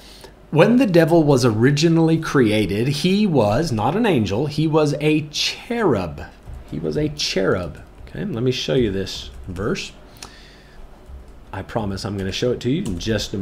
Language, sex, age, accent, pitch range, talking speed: English, male, 40-59, American, 105-155 Hz, 170 wpm